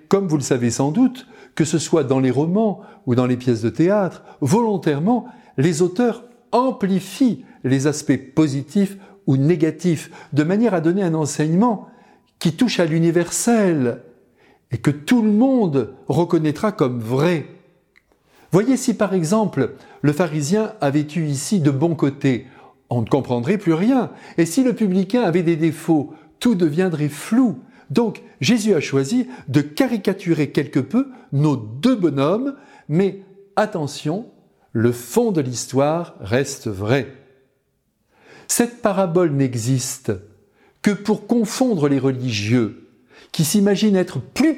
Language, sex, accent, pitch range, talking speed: French, male, French, 140-215 Hz, 140 wpm